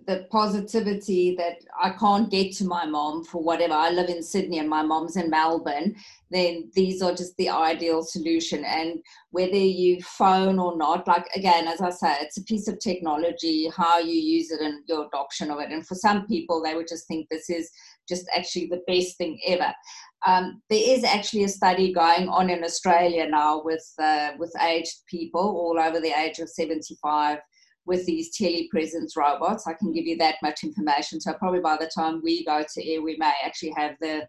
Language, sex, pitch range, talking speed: English, female, 160-185 Hz, 200 wpm